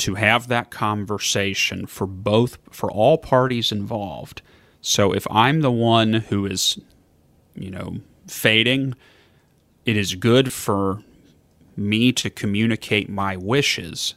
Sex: male